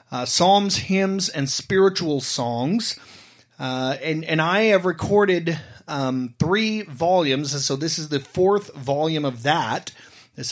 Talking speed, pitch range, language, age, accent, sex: 145 wpm, 140-195 Hz, English, 30-49, American, male